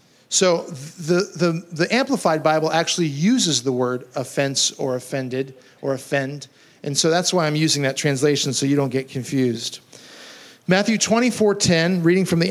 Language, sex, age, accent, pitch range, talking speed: English, male, 50-69, American, 140-185 Hz, 160 wpm